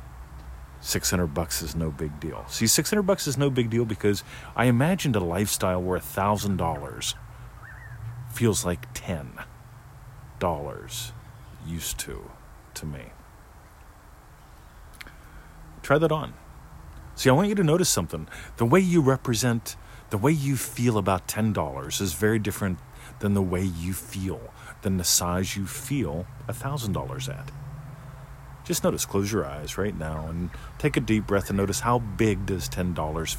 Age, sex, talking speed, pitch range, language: 40-59, male, 155 wpm, 80-120 Hz, English